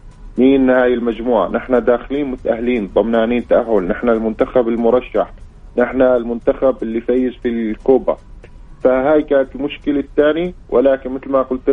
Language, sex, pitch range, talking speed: Arabic, male, 120-150 Hz, 130 wpm